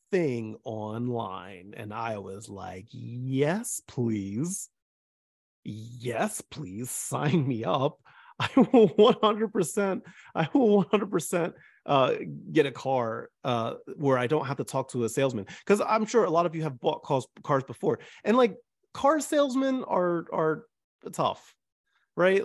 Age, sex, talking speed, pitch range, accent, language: 30-49, male, 135 wpm, 120-180 Hz, American, English